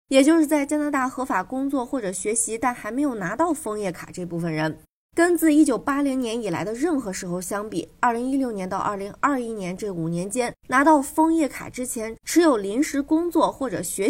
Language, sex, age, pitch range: Chinese, female, 20-39, 185-280 Hz